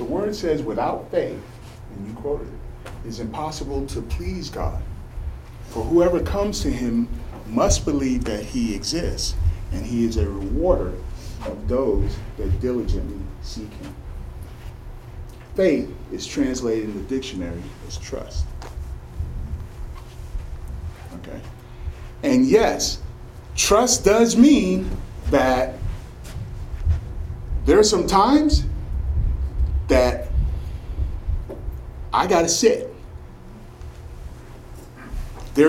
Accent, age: American, 40-59